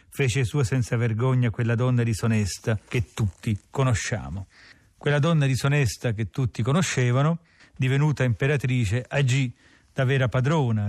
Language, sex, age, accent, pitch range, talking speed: Italian, male, 40-59, native, 105-130 Hz, 120 wpm